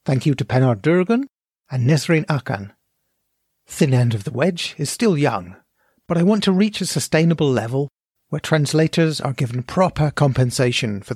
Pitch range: 125-165 Hz